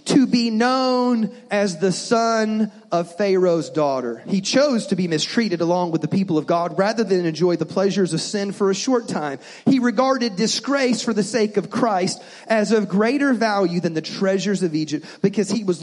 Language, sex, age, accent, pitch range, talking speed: English, male, 30-49, American, 165-220 Hz, 195 wpm